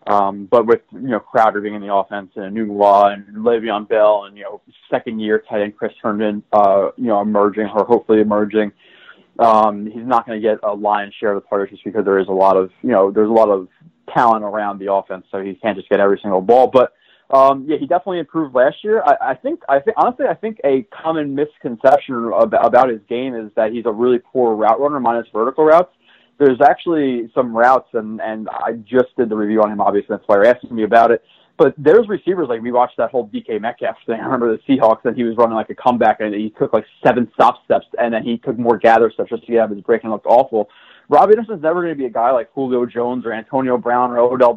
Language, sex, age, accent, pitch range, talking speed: English, male, 20-39, American, 105-130 Hz, 250 wpm